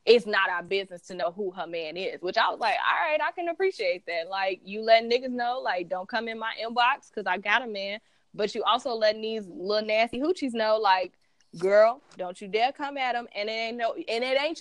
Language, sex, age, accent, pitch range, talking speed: English, female, 20-39, American, 185-230 Hz, 245 wpm